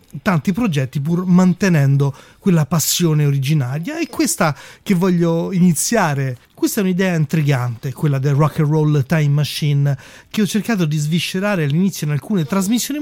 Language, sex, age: Italian, male, 30-49